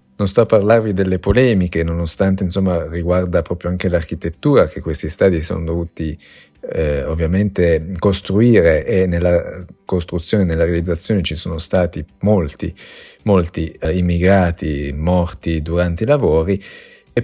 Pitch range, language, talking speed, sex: 85-95 Hz, Italian, 125 wpm, male